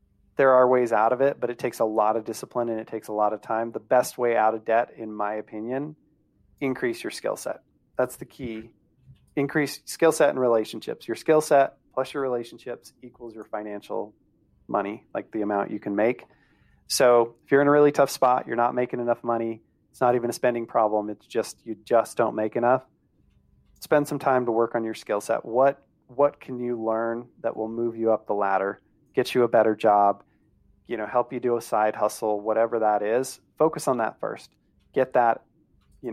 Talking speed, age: 210 wpm, 30-49